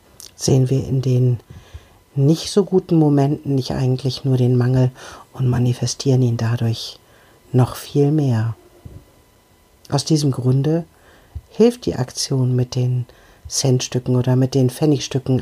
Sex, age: female, 50-69